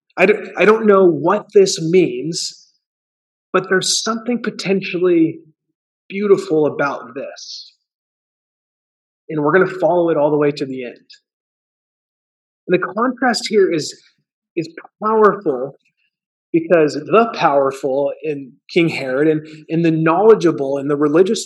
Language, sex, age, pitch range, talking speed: English, male, 30-49, 150-195 Hz, 125 wpm